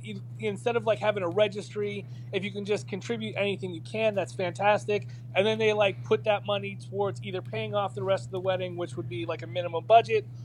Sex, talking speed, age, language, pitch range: male, 225 wpm, 30-49, English, 120-195 Hz